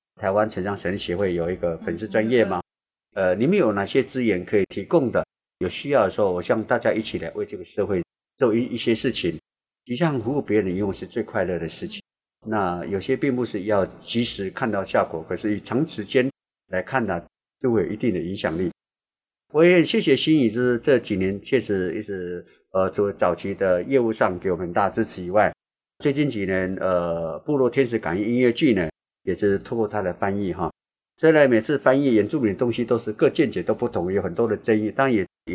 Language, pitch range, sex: Chinese, 100-135 Hz, male